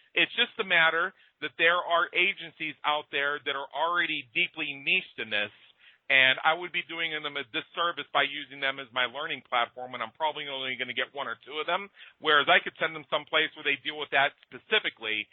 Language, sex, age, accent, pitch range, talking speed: English, male, 40-59, American, 135-165 Hz, 220 wpm